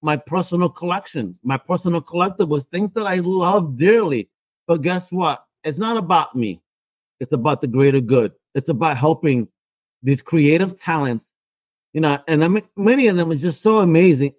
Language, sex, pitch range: English, male, 155-225 Hz